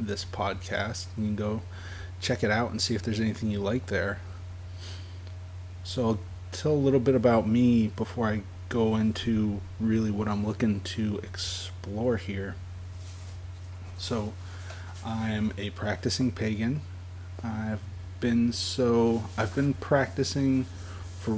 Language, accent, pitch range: English, American, 90-110 Hz